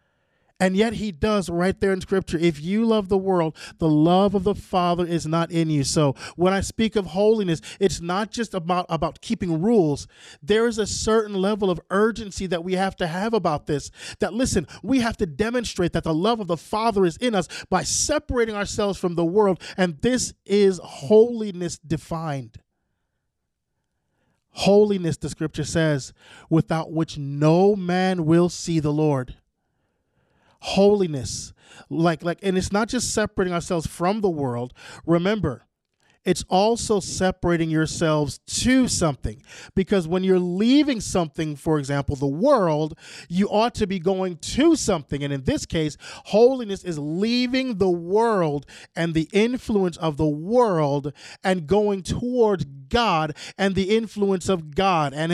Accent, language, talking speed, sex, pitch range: American, English, 160 wpm, male, 160-210 Hz